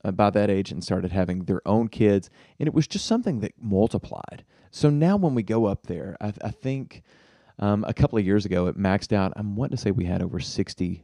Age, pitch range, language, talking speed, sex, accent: 30-49, 95-110 Hz, English, 235 wpm, male, American